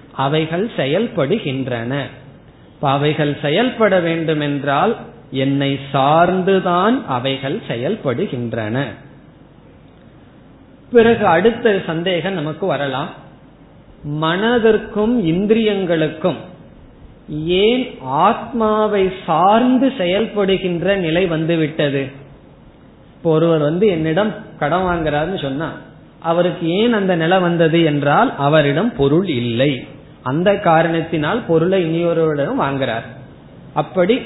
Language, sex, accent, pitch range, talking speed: Tamil, male, native, 145-195 Hz, 75 wpm